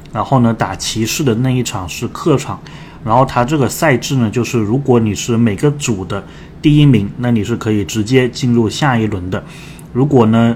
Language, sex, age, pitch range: Chinese, male, 20-39, 105-130 Hz